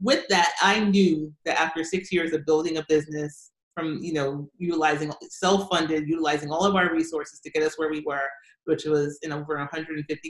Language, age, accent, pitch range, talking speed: English, 30-49, American, 145-165 Hz, 190 wpm